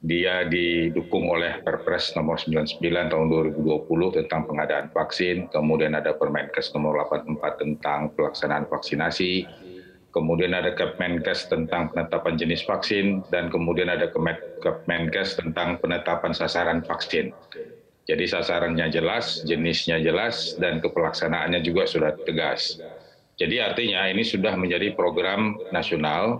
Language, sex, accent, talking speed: Indonesian, male, native, 115 wpm